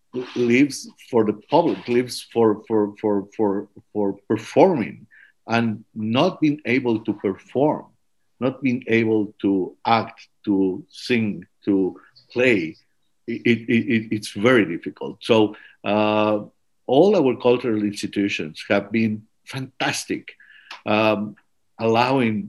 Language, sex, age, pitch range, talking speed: English, male, 50-69, 100-115 Hz, 115 wpm